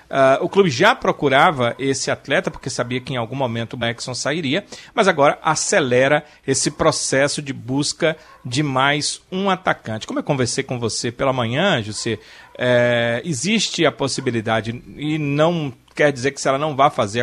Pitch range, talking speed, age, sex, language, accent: 130-175 Hz, 165 wpm, 40-59, male, Portuguese, Brazilian